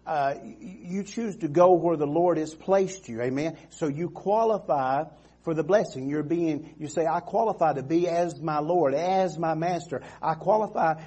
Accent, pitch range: American, 140-180 Hz